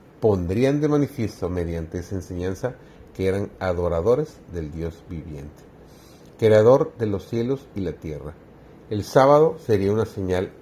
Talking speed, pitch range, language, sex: 135 wpm, 90-115 Hz, Spanish, male